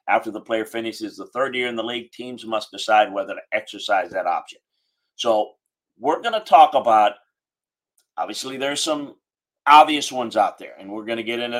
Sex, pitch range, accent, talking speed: male, 105-135 Hz, American, 190 wpm